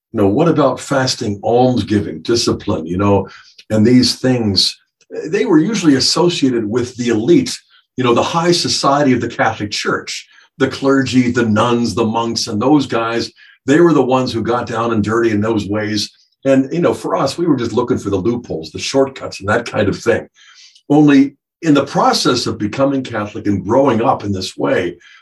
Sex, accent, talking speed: male, American, 195 wpm